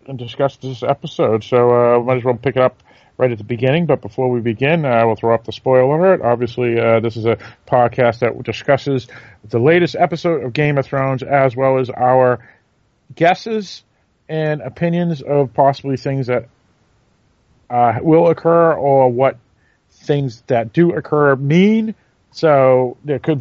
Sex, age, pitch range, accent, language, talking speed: male, 40-59, 115-140 Hz, American, English, 175 wpm